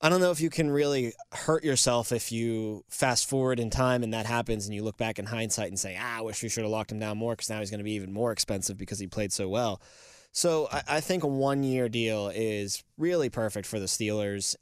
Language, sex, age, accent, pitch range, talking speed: English, male, 20-39, American, 110-135 Hz, 255 wpm